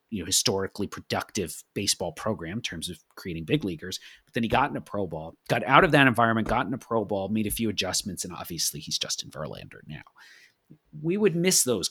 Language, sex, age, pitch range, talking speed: English, male, 40-59, 100-155 Hz, 220 wpm